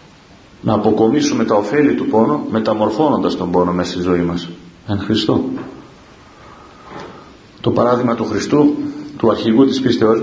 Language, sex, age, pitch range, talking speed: Greek, male, 40-59, 100-130 Hz, 135 wpm